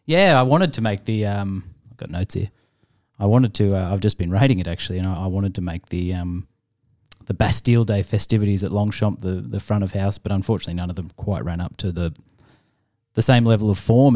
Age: 20-39